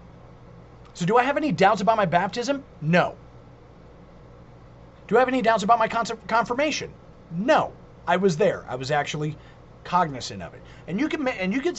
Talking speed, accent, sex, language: 185 wpm, American, male, English